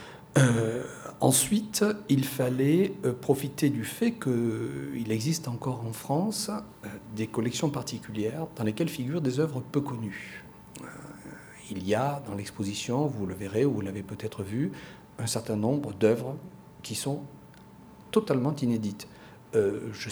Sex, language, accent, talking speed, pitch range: male, French, French, 135 wpm, 110-145 Hz